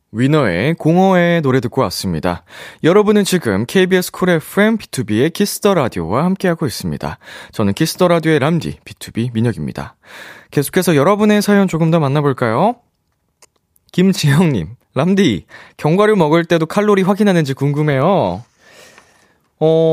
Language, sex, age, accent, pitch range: Korean, male, 20-39, native, 100-165 Hz